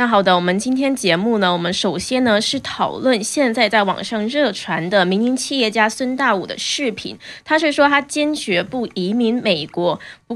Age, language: 20-39, Chinese